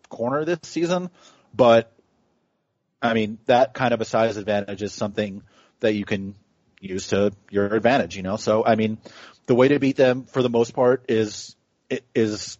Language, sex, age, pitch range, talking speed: English, male, 30-49, 110-125 Hz, 175 wpm